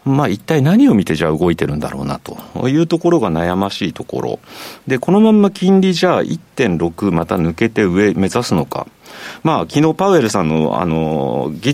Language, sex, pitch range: Japanese, male, 85-140 Hz